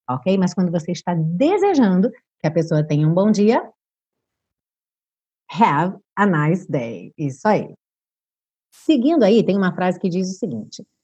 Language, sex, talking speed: Portuguese, female, 150 wpm